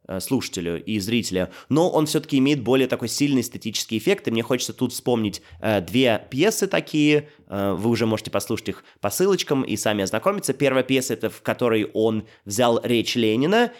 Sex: male